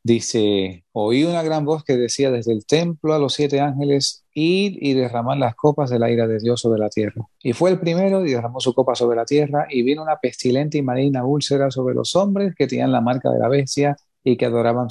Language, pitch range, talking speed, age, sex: English, 115-145 Hz, 235 wpm, 30-49, male